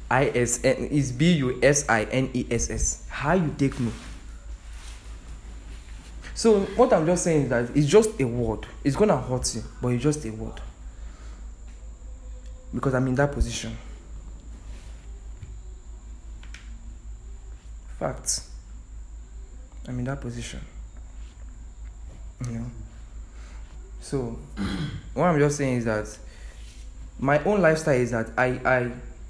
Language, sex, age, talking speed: English, male, 20-39, 130 wpm